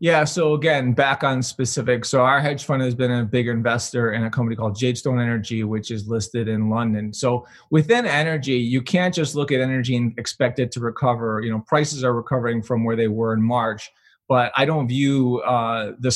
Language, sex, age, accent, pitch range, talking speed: English, male, 20-39, American, 110-125 Hz, 210 wpm